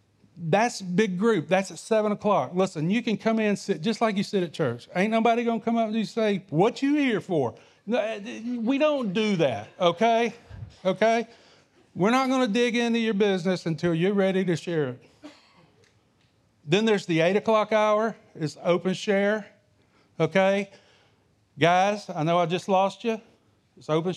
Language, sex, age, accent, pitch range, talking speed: English, male, 40-59, American, 140-205 Hz, 180 wpm